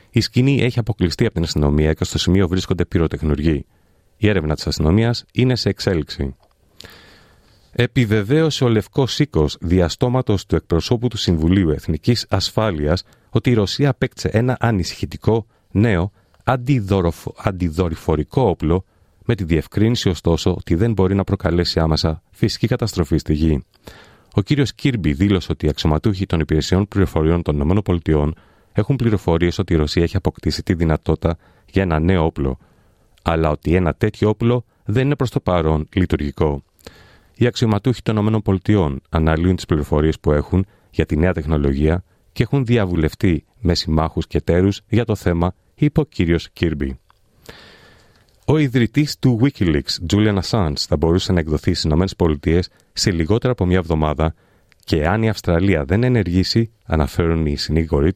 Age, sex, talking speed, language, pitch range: 40-59, male, 150 wpm, Greek, 80-110 Hz